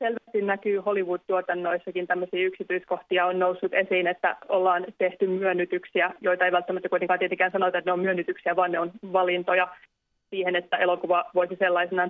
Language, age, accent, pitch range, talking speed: Finnish, 20-39, native, 175-185 Hz, 155 wpm